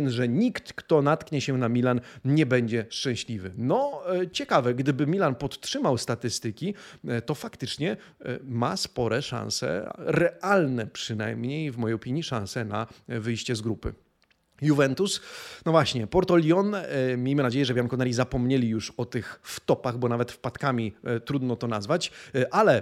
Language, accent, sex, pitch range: Polish, native, male, 120-165 Hz